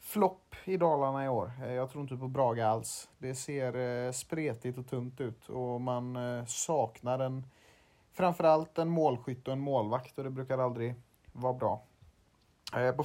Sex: male